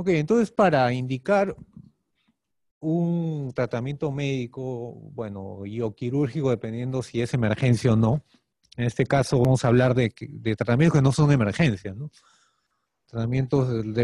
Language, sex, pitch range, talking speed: Spanish, male, 115-140 Hz, 140 wpm